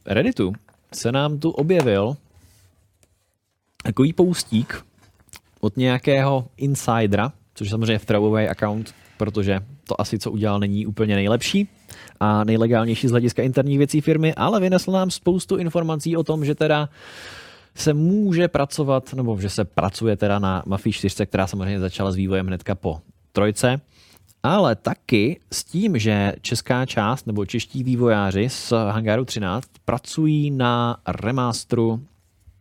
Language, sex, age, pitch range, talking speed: Czech, male, 20-39, 95-120 Hz, 135 wpm